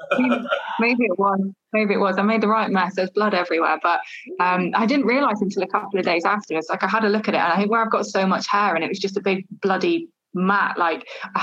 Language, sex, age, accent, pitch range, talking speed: English, female, 20-39, British, 185-215 Hz, 275 wpm